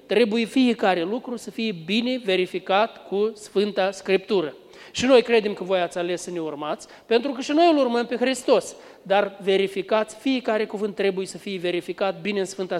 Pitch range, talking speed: 195-255 Hz, 185 wpm